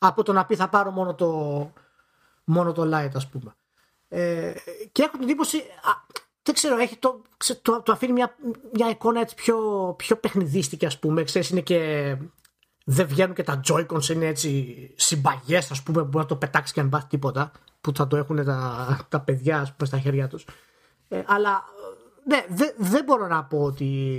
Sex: male